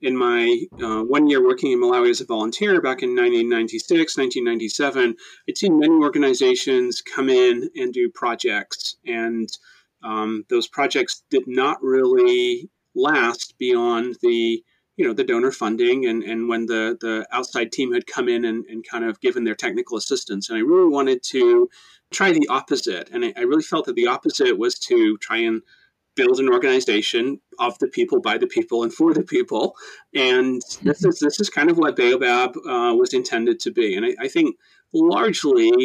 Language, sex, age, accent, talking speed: English, male, 30-49, American, 180 wpm